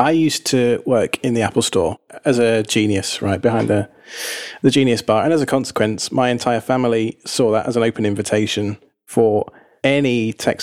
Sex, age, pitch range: male, 30-49, 115-140 Hz